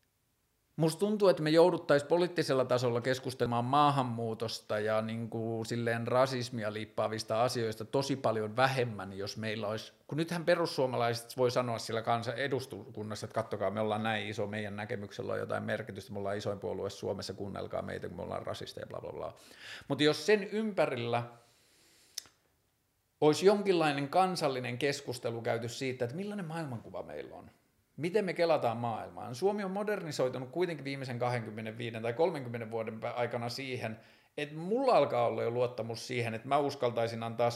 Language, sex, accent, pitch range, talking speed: Finnish, male, native, 110-140 Hz, 150 wpm